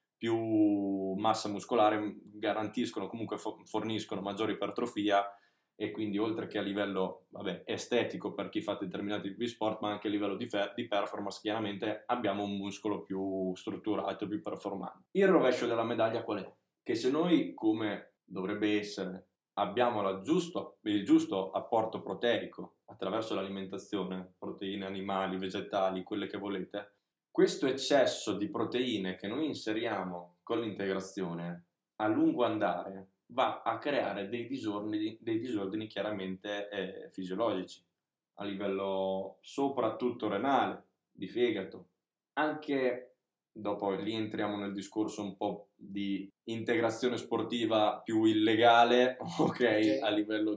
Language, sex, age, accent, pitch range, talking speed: Italian, male, 20-39, native, 100-115 Hz, 130 wpm